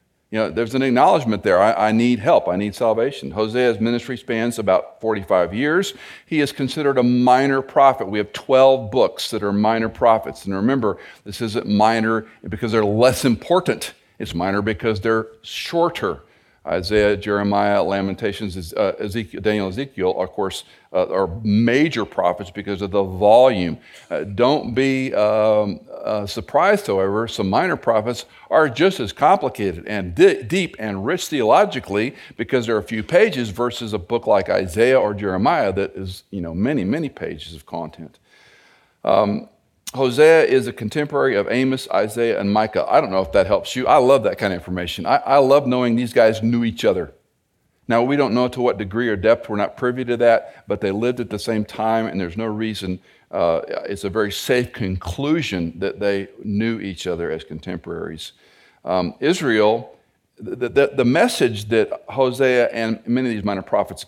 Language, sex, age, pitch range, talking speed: English, male, 50-69, 100-125 Hz, 175 wpm